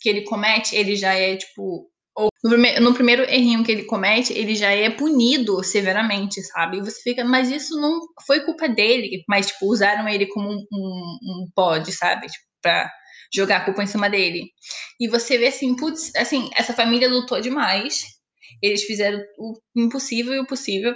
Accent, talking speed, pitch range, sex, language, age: Brazilian, 185 wpm, 200-245 Hz, female, Portuguese, 10-29